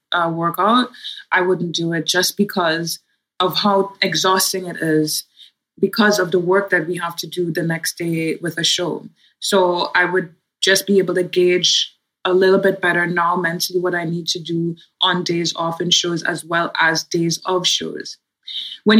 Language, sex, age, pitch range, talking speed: English, female, 20-39, 180-210 Hz, 190 wpm